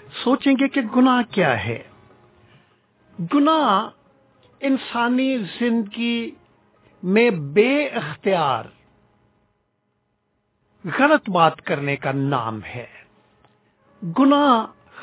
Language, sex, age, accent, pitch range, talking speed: English, male, 50-69, Indian, 155-215 Hz, 75 wpm